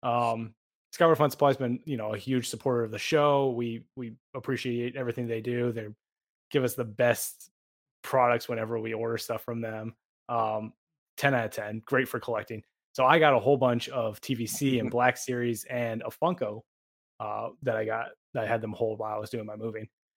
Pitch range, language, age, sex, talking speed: 115-130 Hz, English, 20-39, male, 205 wpm